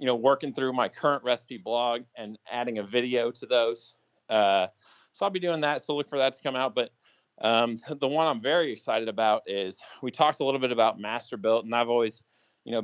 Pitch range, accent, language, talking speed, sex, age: 105-125 Hz, American, English, 225 wpm, male, 20-39